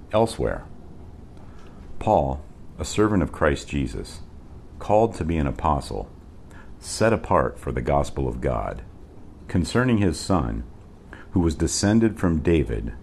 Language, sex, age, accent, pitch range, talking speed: English, male, 50-69, American, 70-95 Hz, 125 wpm